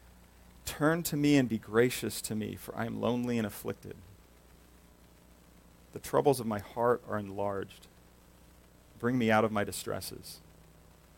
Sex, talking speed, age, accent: male, 145 wpm, 40-59, American